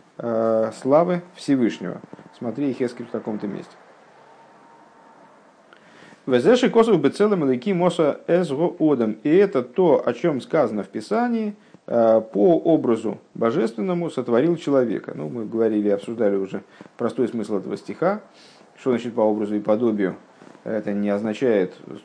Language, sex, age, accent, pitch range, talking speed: Russian, male, 50-69, native, 105-145 Hz, 115 wpm